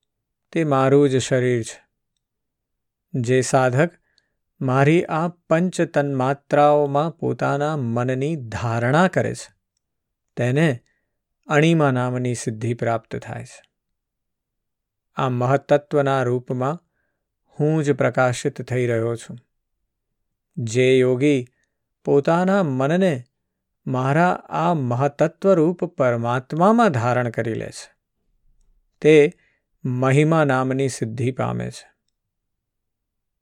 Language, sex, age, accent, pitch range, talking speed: Gujarati, male, 50-69, native, 125-155 Hz, 85 wpm